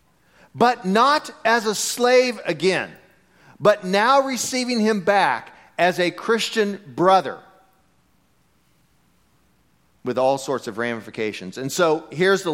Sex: male